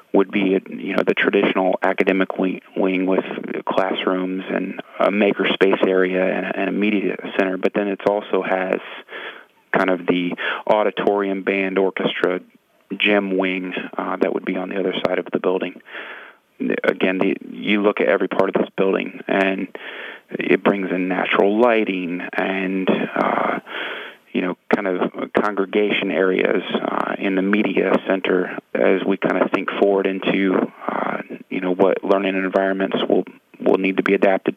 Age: 40-59